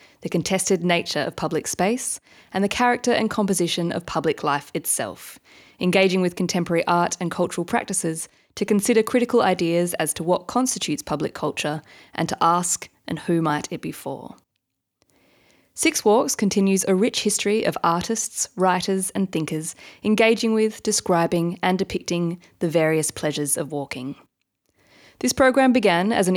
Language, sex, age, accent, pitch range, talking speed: English, female, 20-39, Australian, 170-210 Hz, 150 wpm